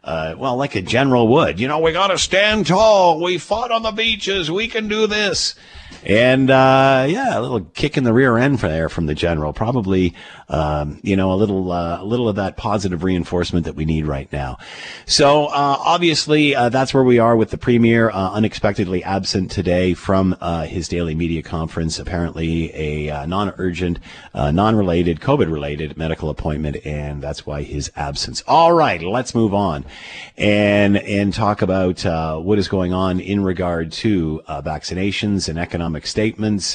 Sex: male